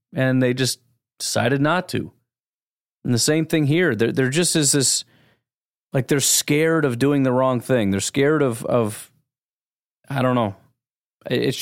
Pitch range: 120-150 Hz